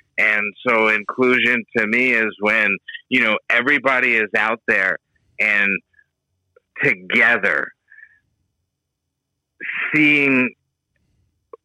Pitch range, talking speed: 110-130 Hz, 80 wpm